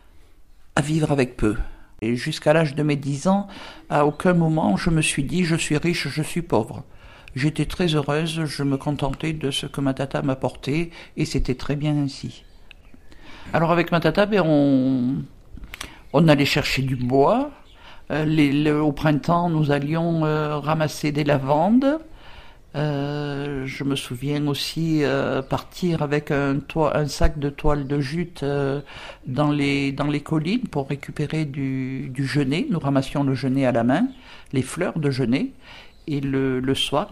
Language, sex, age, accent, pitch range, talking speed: French, male, 60-79, French, 135-155 Hz, 170 wpm